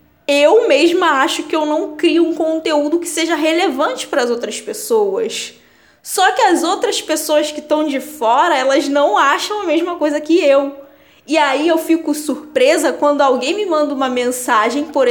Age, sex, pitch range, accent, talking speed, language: 10-29, female, 280-345 Hz, Brazilian, 180 wpm, Portuguese